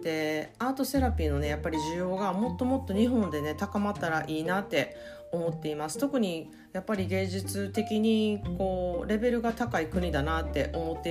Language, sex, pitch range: Japanese, female, 155-220 Hz